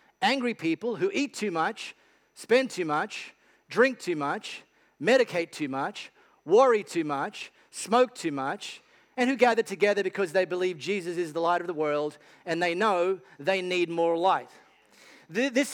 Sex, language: male, English